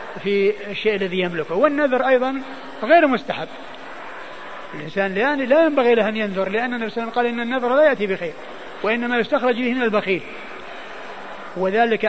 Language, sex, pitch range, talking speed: Arabic, male, 200-240 Hz, 140 wpm